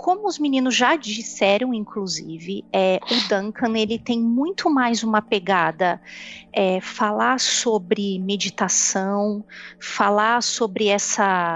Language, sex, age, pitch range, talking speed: Portuguese, female, 30-49, 190-235 Hz, 95 wpm